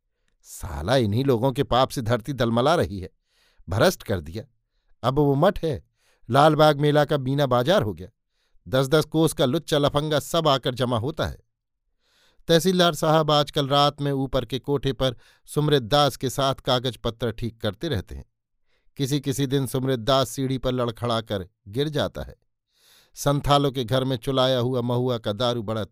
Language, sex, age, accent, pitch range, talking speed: Hindi, male, 50-69, native, 115-140 Hz, 170 wpm